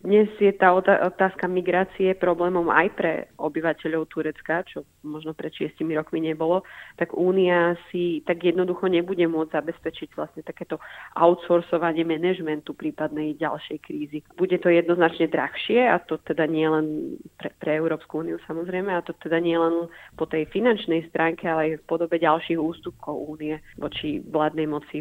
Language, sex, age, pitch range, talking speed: Slovak, female, 30-49, 160-175 Hz, 150 wpm